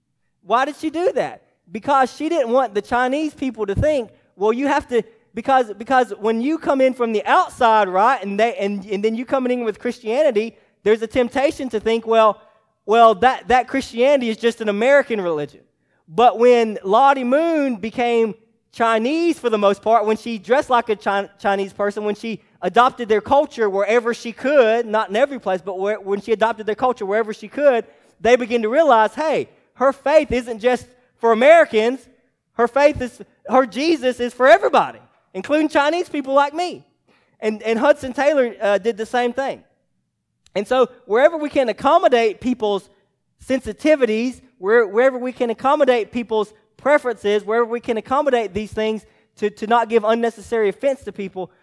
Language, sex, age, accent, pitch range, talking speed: English, male, 20-39, American, 210-265 Hz, 180 wpm